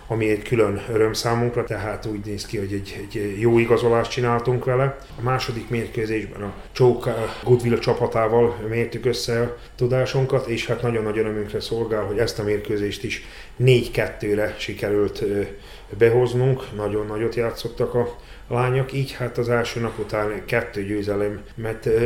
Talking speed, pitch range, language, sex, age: 140 wpm, 110-125 Hz, Hungarian, male, 30-49